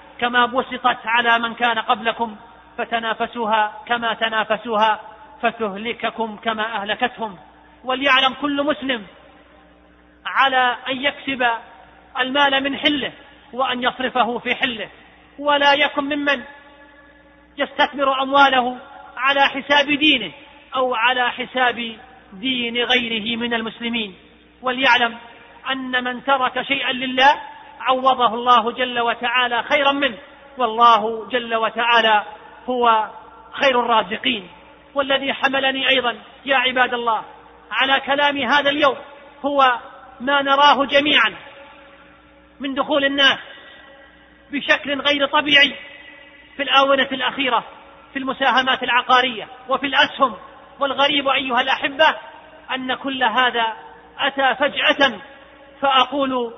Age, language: 40-59, Arabic